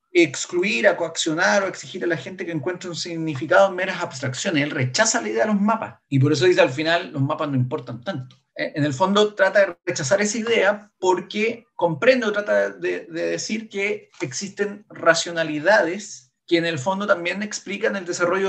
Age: 40-59